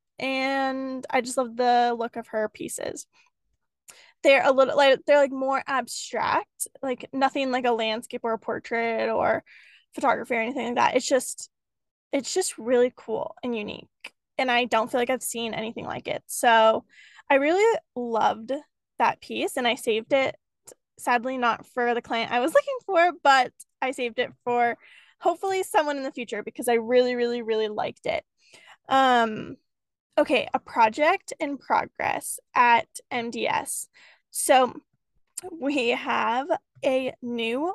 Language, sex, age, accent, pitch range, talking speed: English, female, 10-29, American, 235-280 Hz, 155 wpm